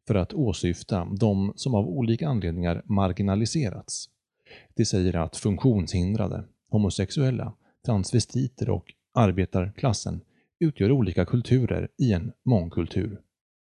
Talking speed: 100 wpm